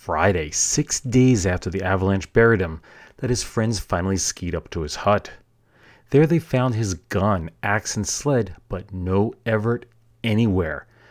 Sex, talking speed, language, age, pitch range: male, 155 wpm, English, 30-49, 95-120 Hz